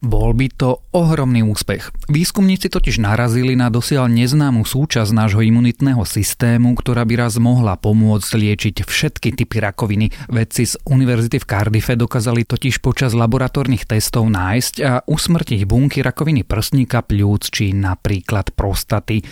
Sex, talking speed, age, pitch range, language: male, 135 wpm, 30-49, 105-130 Hz, Slovak